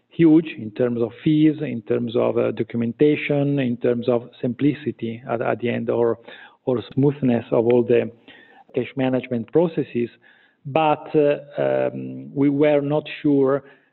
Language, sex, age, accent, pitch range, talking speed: English, male, 40-59, Italian, 120-145 Hz, 145 wpm